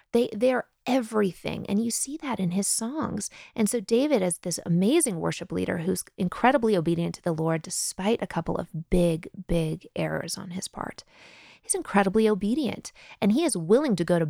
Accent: American